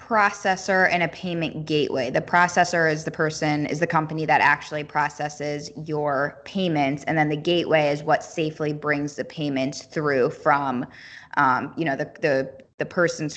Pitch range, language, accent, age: 145-165 Hz, English, American, 10-29